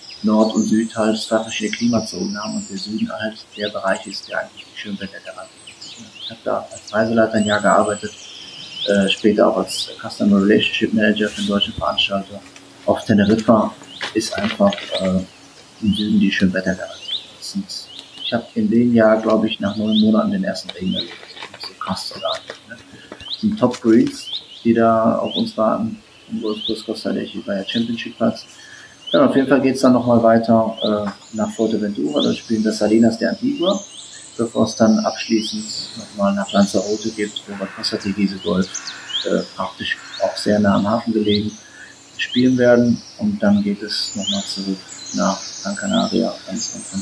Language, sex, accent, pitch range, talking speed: German, male, German, 105-120 Hz, 175 wpm